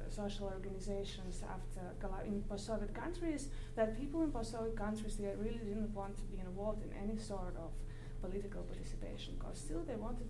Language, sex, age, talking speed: English, female, 20-39, 180 wpm